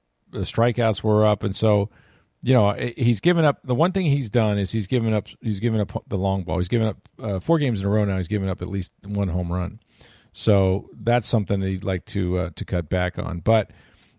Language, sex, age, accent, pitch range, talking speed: English, male, 40-59, American, 100-125 Hz, 240 wpm